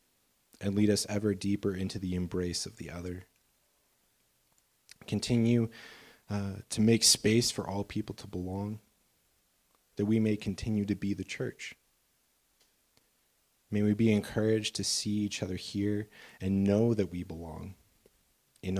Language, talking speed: English, 140 wpm